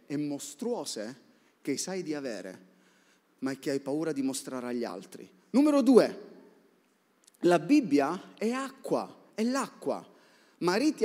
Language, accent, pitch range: Italian, native, 165-275 Hz